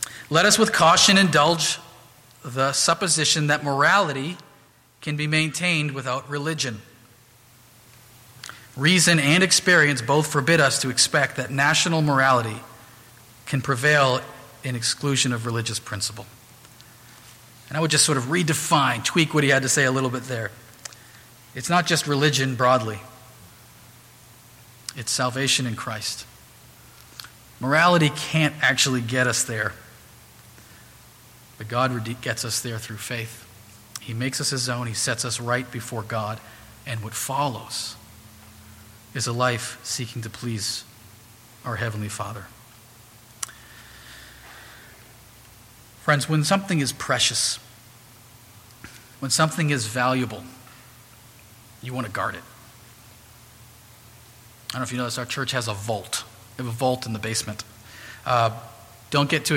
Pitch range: 115-135 Hz